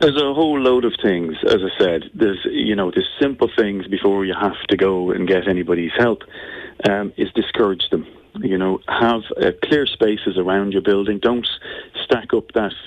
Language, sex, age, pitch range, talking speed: English, male, 30-49, 90-115 Hz, 190 wpm